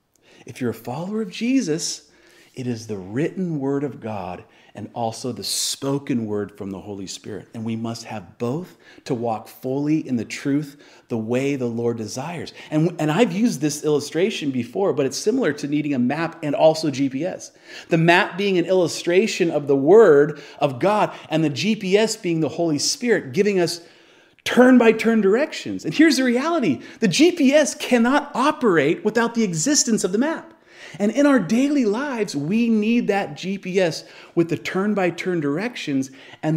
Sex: male